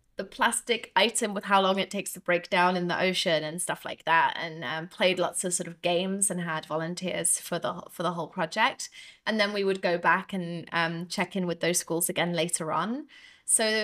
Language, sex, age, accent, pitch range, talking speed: English, female, 20-39, British, 170-200 Hz, 215 wpm